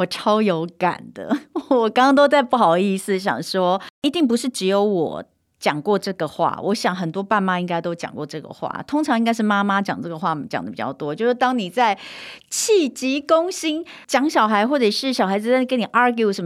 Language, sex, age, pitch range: Chinese, female, 50-69, 195-270 Hz